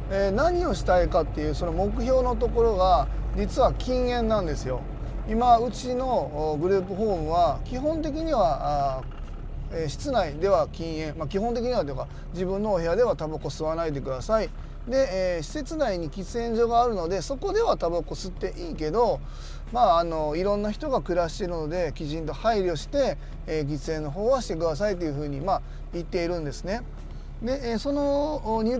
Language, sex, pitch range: Japanese, male, 160-235 Hz